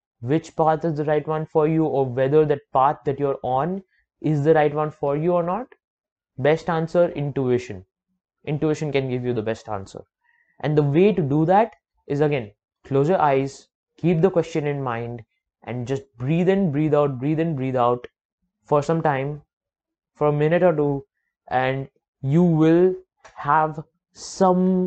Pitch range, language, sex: 135-160 Hz, English, male